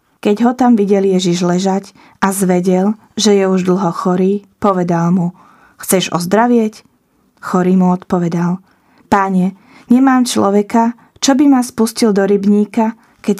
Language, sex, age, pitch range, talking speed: Slovak, female, 20-39, 185-220 Hz, 135 wpm